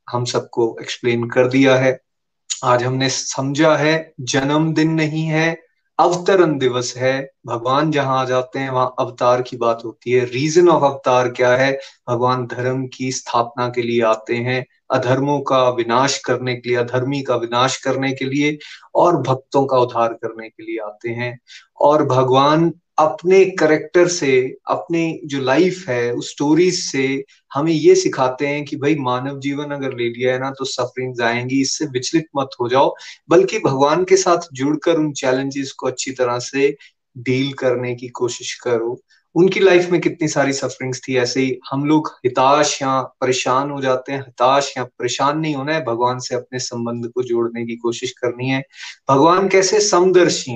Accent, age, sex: native, 30-49, male